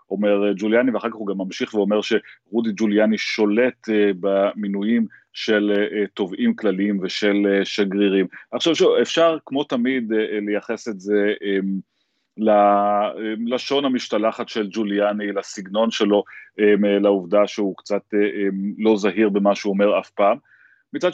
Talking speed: 115 wpm